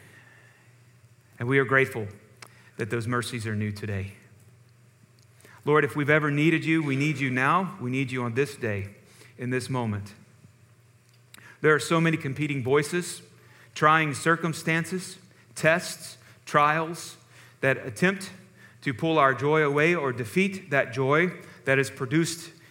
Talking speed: 140 wpm